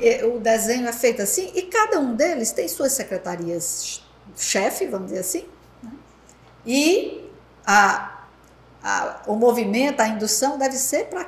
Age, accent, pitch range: 60-79, Brazilian, 195-255 Hz